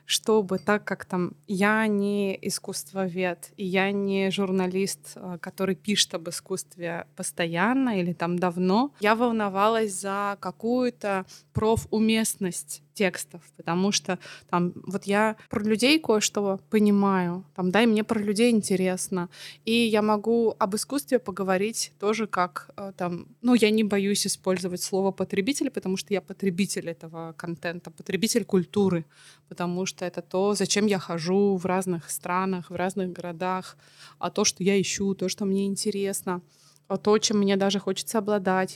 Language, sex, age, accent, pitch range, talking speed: Russian, female, 20-39, native, 185-215 Hz, 145 wpm